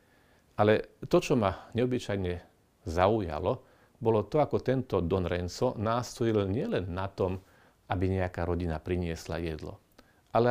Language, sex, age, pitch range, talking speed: Slovak, male, 40-59, 90-115 Hz, 125 wpm